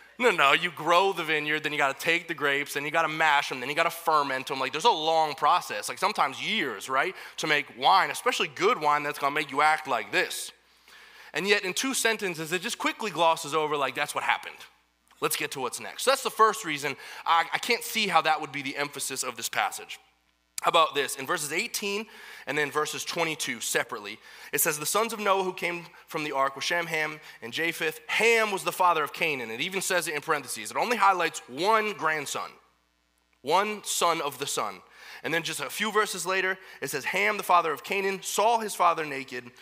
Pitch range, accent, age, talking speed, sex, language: 145-195 Hz, American, 20-39, 230 wpm, male, English